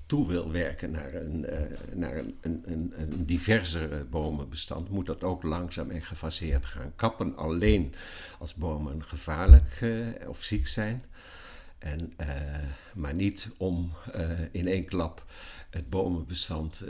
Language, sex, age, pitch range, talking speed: Dutch, male, 60-79, 75-90 Hz, 140 wpm